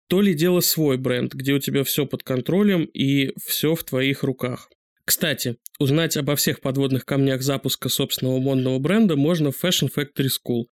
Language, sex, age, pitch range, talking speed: Russian, male, 20-39, 130-160 Hz, 175 wpm